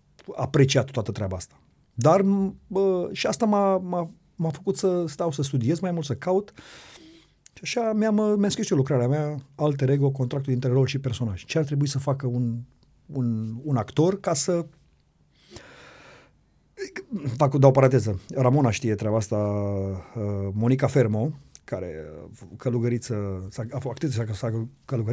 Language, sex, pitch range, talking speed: Romanian, male, 110-145 Hz, 140 wpm